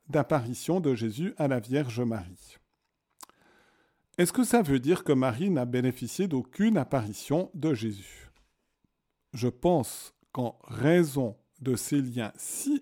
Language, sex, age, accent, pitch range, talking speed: French, male, 50-69, French, 125-170 Hz, 130 wpm